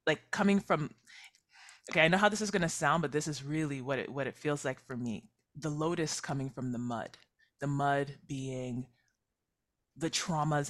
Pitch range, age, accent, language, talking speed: 135-165 Hz, 20-39, American, English, 190 wpm